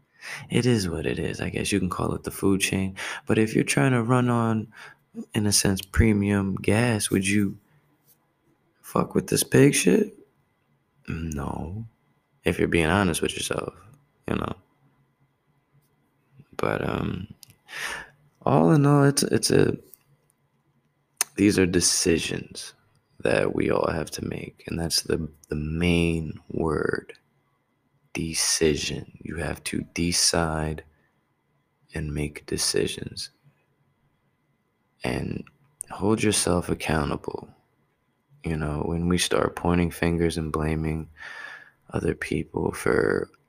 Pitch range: 80-120 Hz